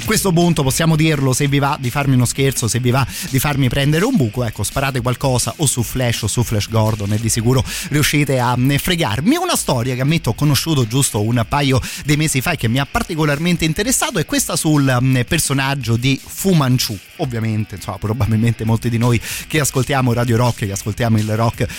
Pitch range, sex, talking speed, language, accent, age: 115-140 Hz, male, 205 wpm, Italian, native, 30-49